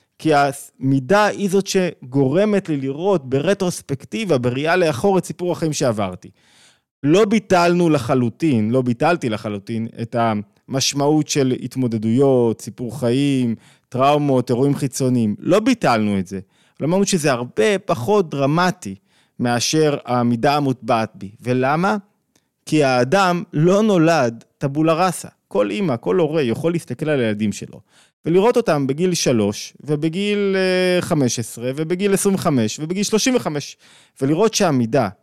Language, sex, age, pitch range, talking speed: Hebrew, male, 20-39, 125-175 Hz, 125 wpm